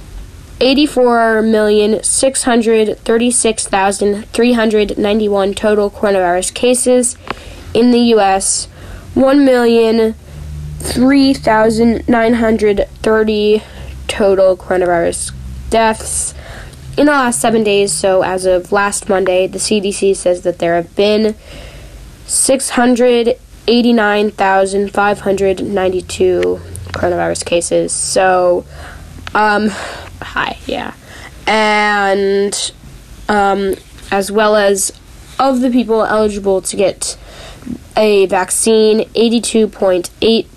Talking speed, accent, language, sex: 110 wpm, American, English, female